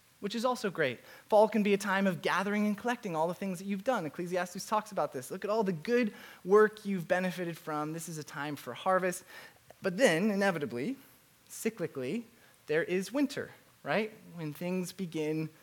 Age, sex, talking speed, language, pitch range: 20-39, male, 190 wpm, English, 155-215 Hz